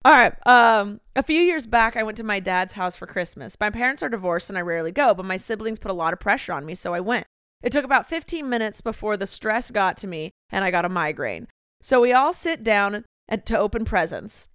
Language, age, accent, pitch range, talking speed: English, 30-49, American, 205-260 Hz, 250 wpm